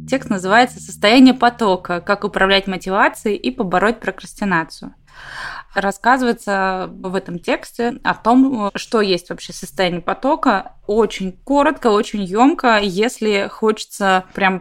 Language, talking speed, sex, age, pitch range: Russian, 120 wpm, female, 20-39, 185-235 Hz